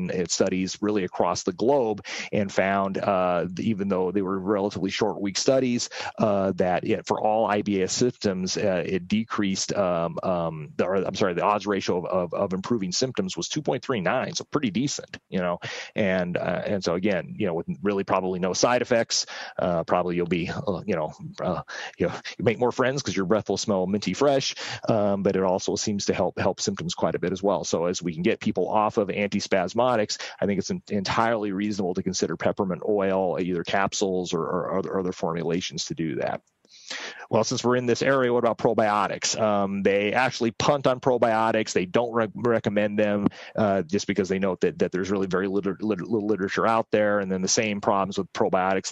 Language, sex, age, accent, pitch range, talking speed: Italian, male, 30-49, American, 95-110 Hz, 205 wpm